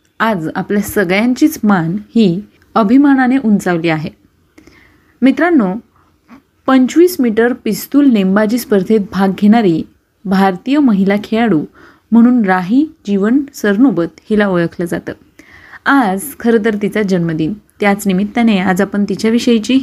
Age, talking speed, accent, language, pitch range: 30-49, 105 wpm, native, Marathi, 195-245 Hz